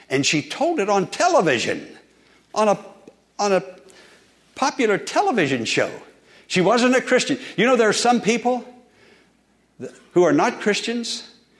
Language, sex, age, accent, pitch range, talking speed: English, male, 60-79, American, 155-215 Hz, 140 wpm